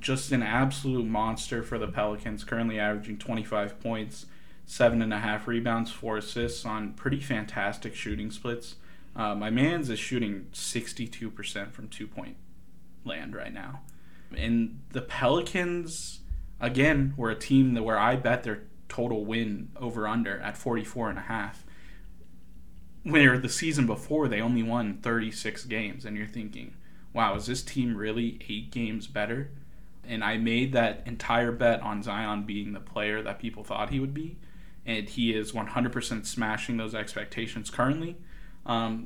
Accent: American